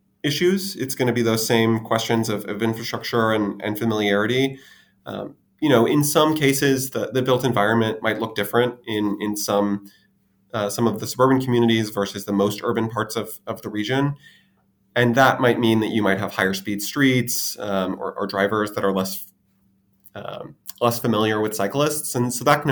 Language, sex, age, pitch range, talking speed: English, male, 20-39, 100-120 Hz, 190 wpm